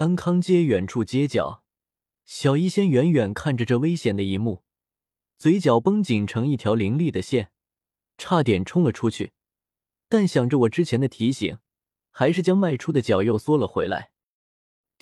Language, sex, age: Chinese, male, 20-39